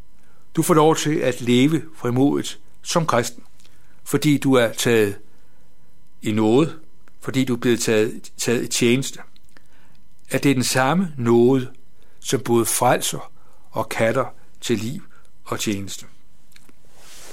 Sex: male